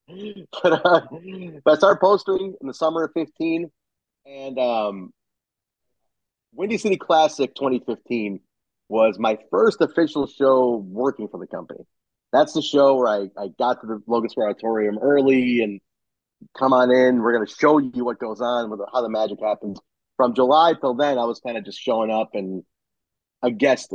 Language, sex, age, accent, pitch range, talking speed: English, male, 30-49, American, 115-165 Hz, 170 wpm